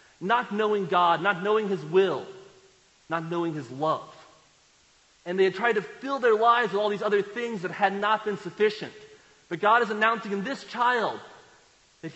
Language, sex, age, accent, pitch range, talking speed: English, male, 40-59, American, 165-215 Hz, 185 wpm